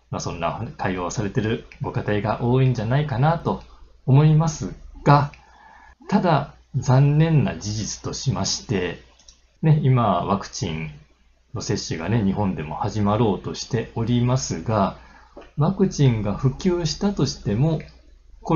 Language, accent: Japanese, native